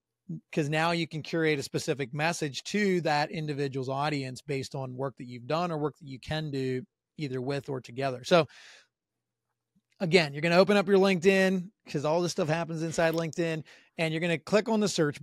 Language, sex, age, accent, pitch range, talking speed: English, male, 30-49, American, 140-170 Hz, 205 wpm